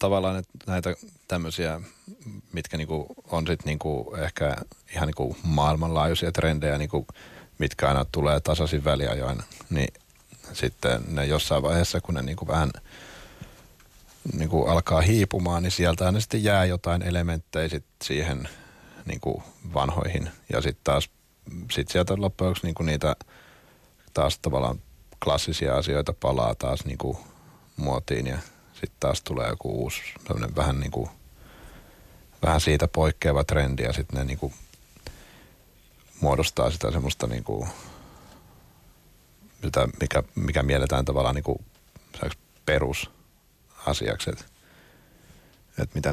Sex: male